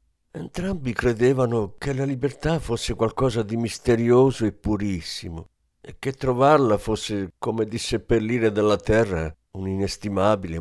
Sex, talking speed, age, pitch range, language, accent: male, 120 wpm, 50-69, 85-125 Hz, Italian, native